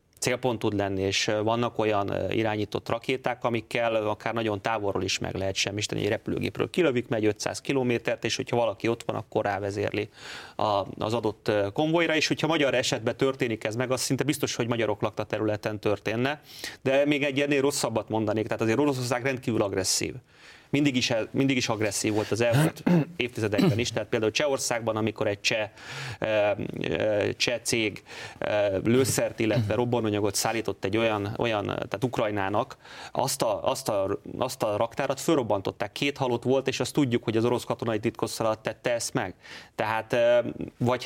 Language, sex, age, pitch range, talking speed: Hungarian, male, 30-49, 110-130 Hz, 160 wpm